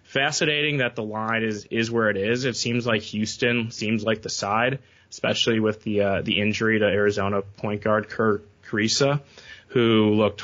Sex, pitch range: male, 100-115 Hz